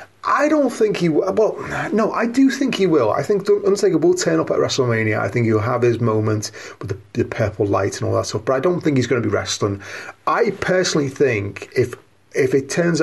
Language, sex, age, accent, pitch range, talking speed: English, male, 30-49, British, 110-160 Hz, 230 wpm